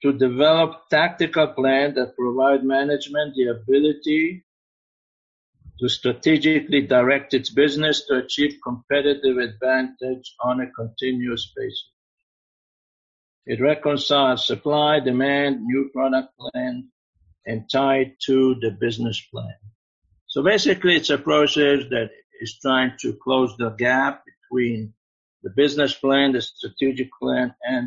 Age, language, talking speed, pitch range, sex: 50-69, English, 120 wpm, 125-145 Hz, male